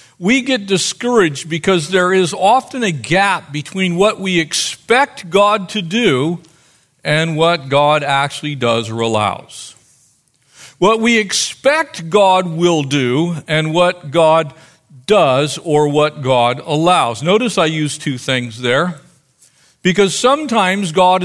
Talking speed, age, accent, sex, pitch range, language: 130 wpm, 50-69, American, male, 145-185 Hz, English